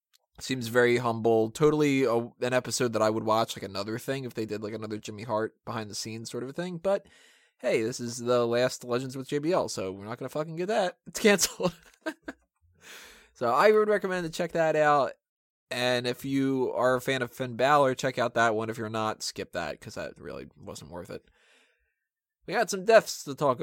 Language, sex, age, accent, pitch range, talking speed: English, male, 20-39, American, 105-140 Hz, 215 wpm